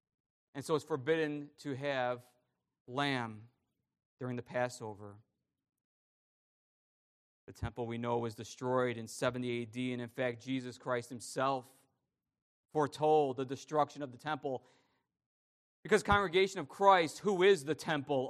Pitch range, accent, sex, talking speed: 135-195 Hz, American, male, 130 wpm